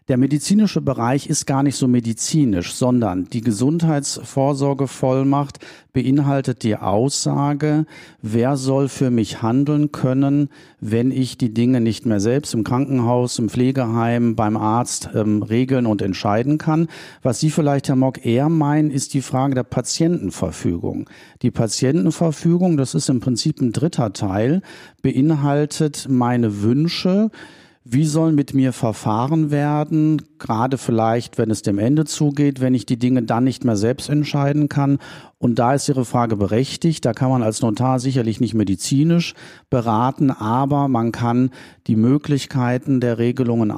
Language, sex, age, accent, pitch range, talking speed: German, male, 50-69, German, 115-145 Hz, 145 wpm